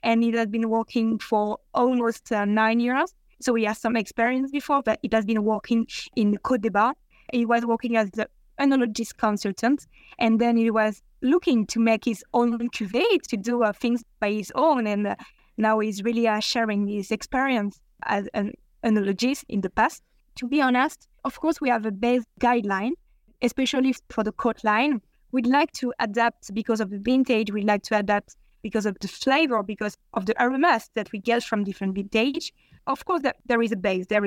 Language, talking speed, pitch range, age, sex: English, 195 wpm, 220-255 Hz, 20-39, female